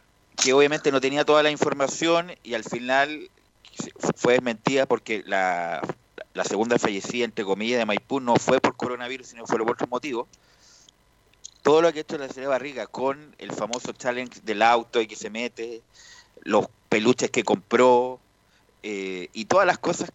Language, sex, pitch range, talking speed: Spanish, male, 110-140 Hz, 170 wpm